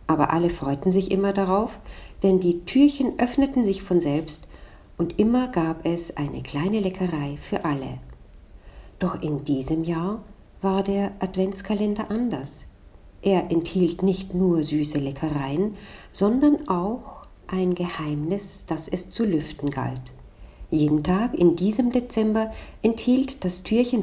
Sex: female